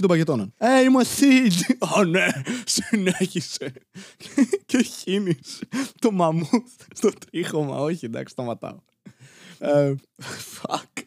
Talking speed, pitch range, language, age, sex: 90 wpm, 145-195 Hz, Greek, 20-39, male